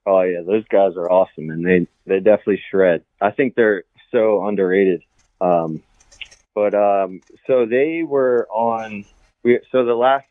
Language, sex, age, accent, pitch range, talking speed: English, male, 20-39, American, 90-105 Hz, 155 wpm